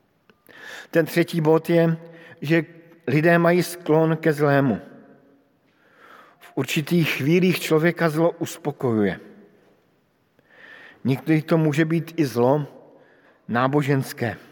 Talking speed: 95 wpm